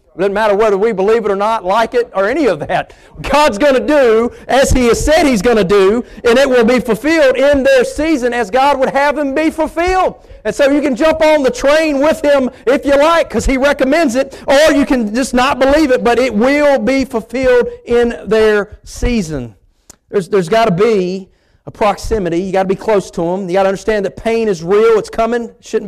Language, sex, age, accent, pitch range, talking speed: English, male, 40-59, American, 195-250 Hz, 225 wpm